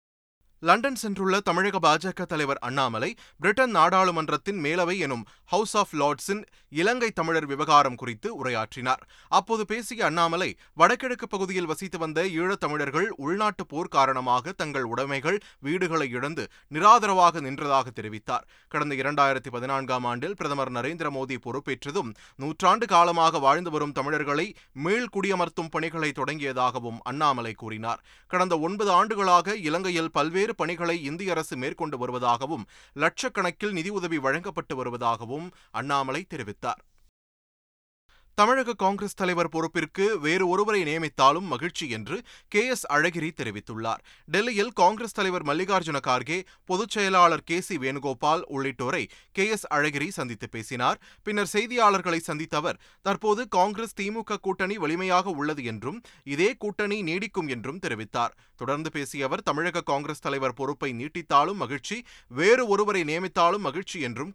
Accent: native